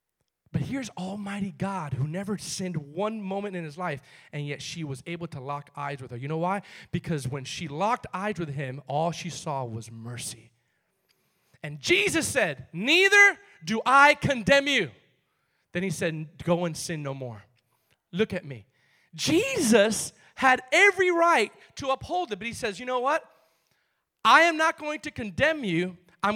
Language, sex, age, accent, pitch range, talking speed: English, male, 30-49, American, 155-250 Hz, 175 wpm